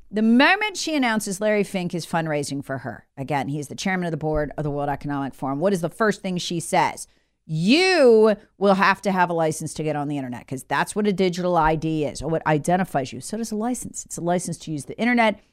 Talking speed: 245 wpm